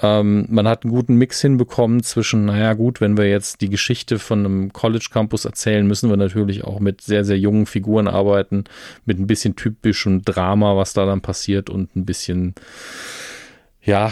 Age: 40-59